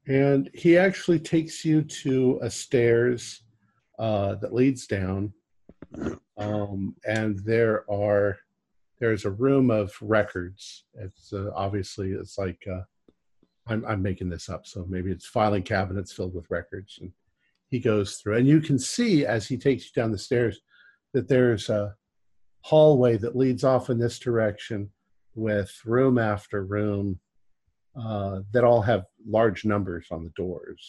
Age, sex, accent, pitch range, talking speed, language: 50-69, male, American, 95-120 Hz, 150 wpm, English